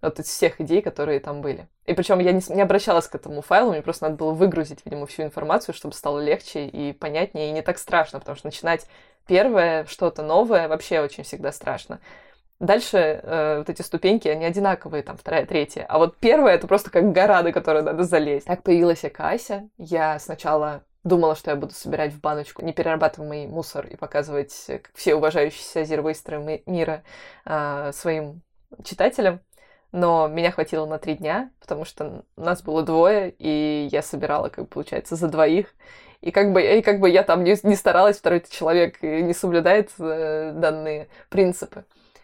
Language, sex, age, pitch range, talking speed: Russian, female, 20-39, 155-185 Hz, 175 wpm